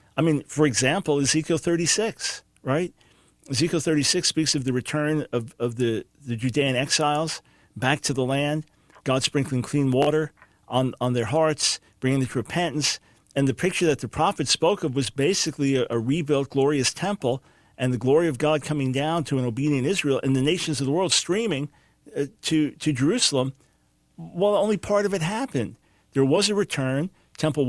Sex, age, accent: male, 50-69, American